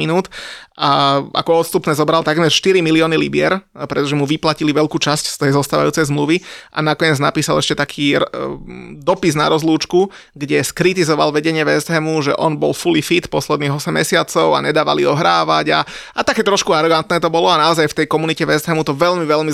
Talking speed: 180 wpm